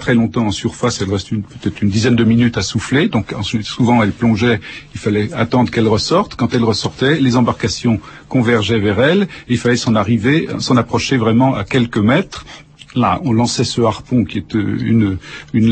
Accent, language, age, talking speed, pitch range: French, French, 50-69, 190 wpm, 110-130 Hz